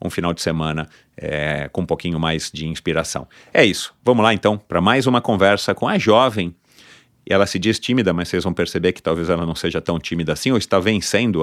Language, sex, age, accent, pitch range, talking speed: Portuguese, male, 40-59, Brazilian, 95-125 Hz, 215 wpm